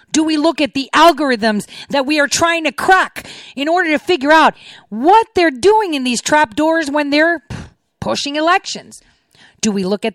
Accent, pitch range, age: American, 230-335 Hz, 40-59